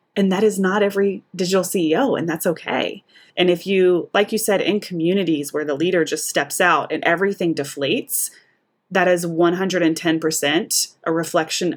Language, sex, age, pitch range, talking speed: English, female, 20-39, 160-195 Hz, 165 wpm